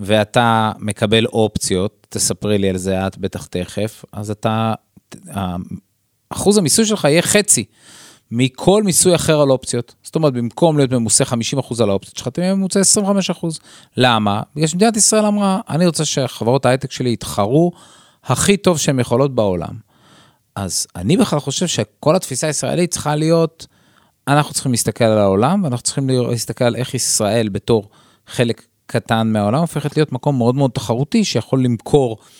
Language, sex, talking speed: Hebrew, male, 150 wpm